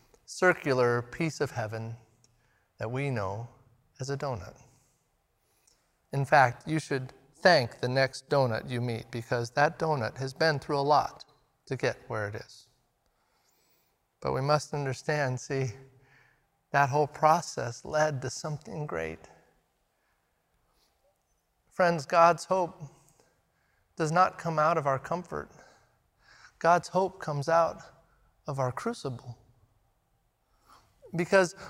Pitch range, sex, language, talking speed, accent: 140-220 Hz, male, English, 120 wpm, American